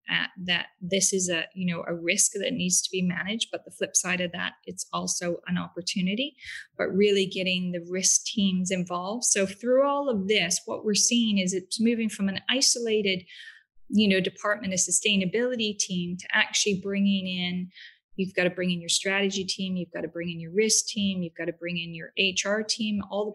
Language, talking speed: English, 205 wpm